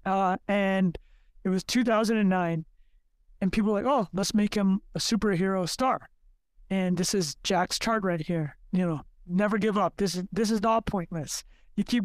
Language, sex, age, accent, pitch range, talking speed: English, male, 20-39, American, 175-210 Hz, 195 wpm